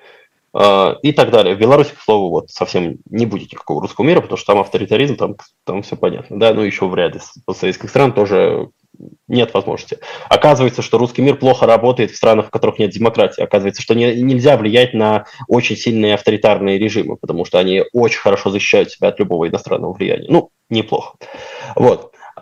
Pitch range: 115-160 Hz